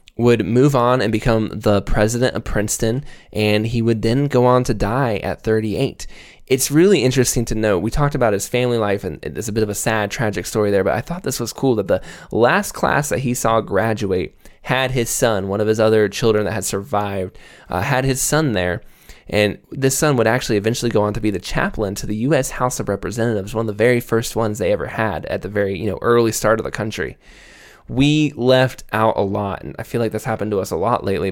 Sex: male